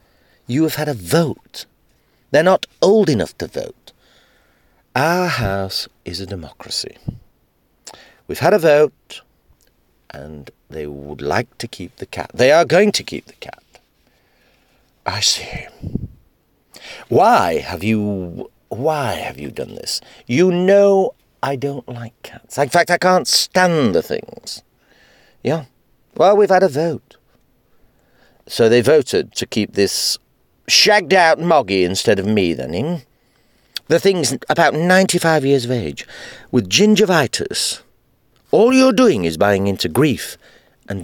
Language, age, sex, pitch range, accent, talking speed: English, 50-69, male, 120-185 Hz, British, 135 wpm